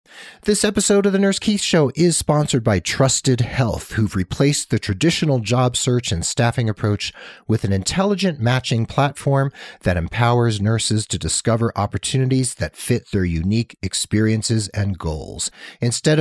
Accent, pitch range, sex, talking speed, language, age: American, 105-145 Hz, male, 150 wpm, English, 40-59